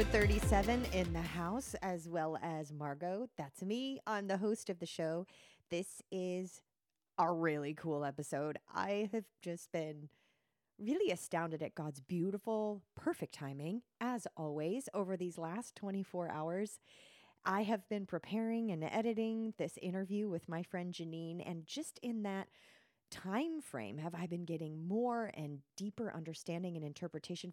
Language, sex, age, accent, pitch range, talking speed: English, female, 30-49, American, 165-215 Hz, 150 wpm